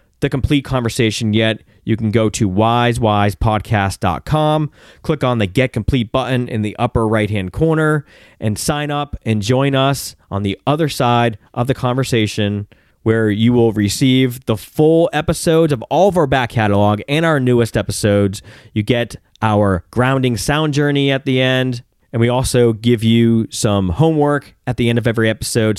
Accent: American